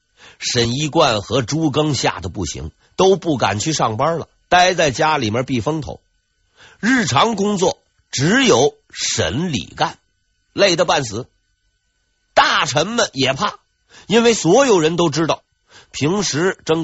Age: 50-69